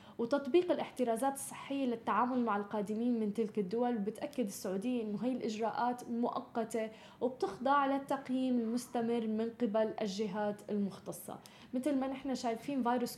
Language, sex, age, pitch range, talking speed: Arabic, female, 10-29, 205-245 Hz, 125 wpm